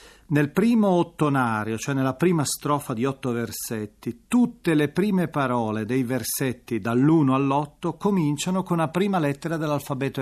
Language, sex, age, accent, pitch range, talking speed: Italian, male, 40-59, native, 125-165 Hz, 140 wpm